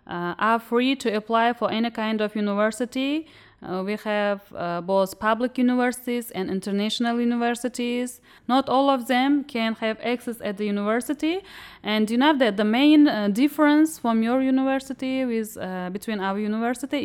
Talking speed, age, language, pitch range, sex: 160 wpm, 30-49, Slovak, 190-245 Hz, female